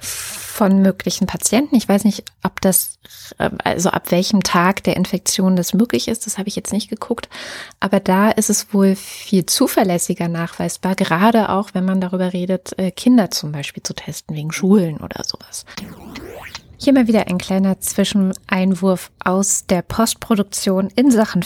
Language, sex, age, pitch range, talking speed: German, female, 20-39, 180-220 Hz, 160 wpm